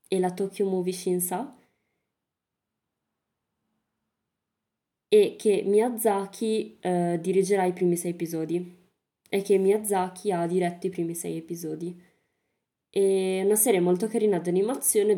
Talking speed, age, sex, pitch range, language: 120 wpm, 20-39, female, 175-220 Hz, Italian